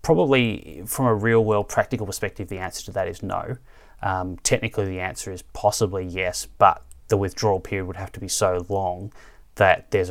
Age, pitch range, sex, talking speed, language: 30-49, 90-100 Hz, male, 190 wpm, English